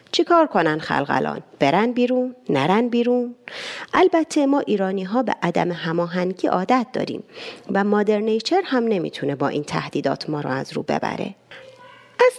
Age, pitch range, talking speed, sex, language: 30-49, 190-280 Hz, 150 wpm, female, Persian